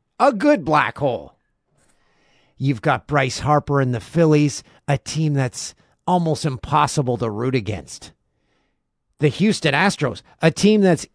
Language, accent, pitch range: English, American, 120-165 Hz